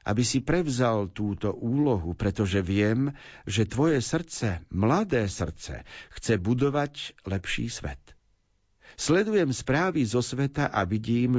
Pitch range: 100-130 Hz